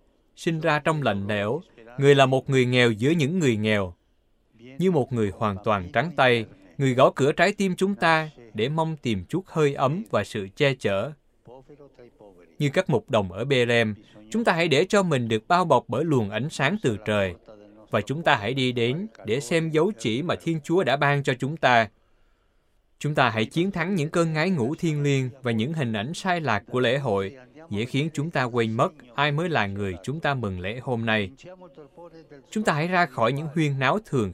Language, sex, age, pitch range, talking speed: Vietnamese, male, 20-39, 115-160 Hz, 215 wpm